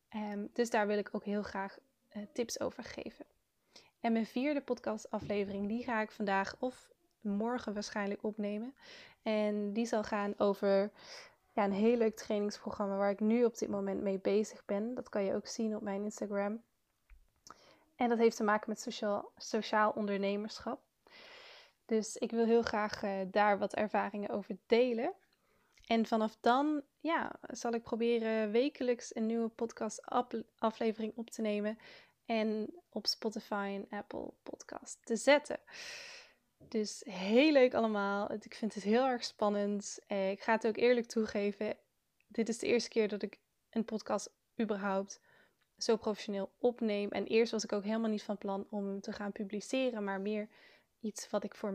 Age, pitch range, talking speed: 20-39, 205-235 Hz, 165 wpm